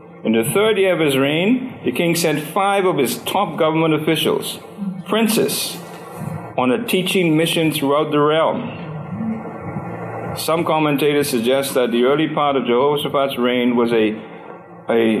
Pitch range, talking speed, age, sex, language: 125-170 Hz, 145 wpm, 50-69, male, English